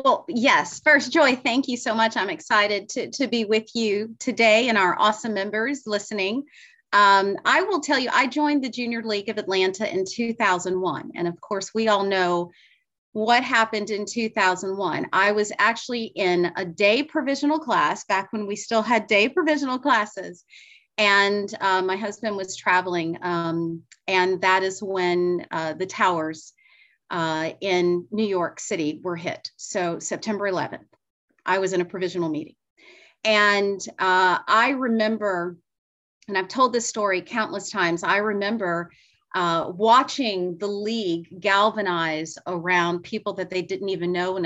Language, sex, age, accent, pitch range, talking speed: English, female, 30-49, American, 180-225 Hz, 160 wpm